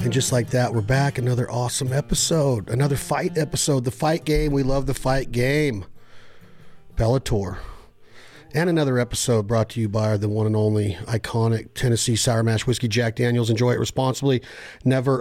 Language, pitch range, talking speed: English, 115-135 Hz, 170 wpm